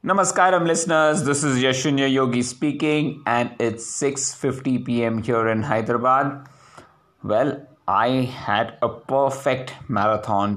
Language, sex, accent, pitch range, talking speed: English, male, Indian, 110-135 Hz, 115 wpm